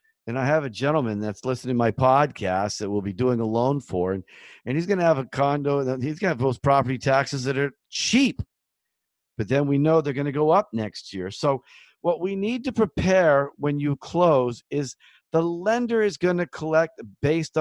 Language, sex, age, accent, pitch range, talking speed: English, male, 50-69, American, 130-165 Hz, 205 wpm